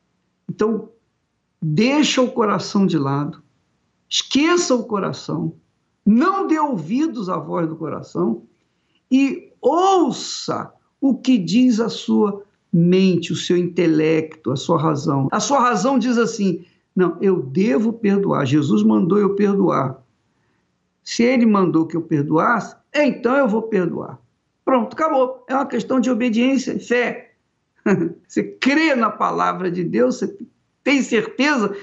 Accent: Brazilian